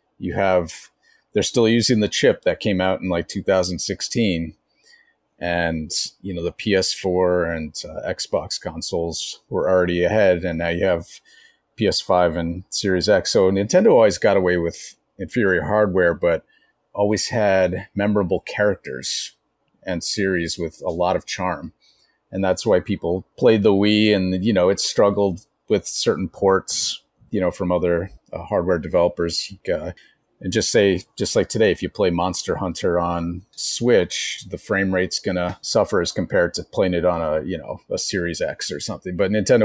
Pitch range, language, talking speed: 85-100 Hz, English, 165 wpm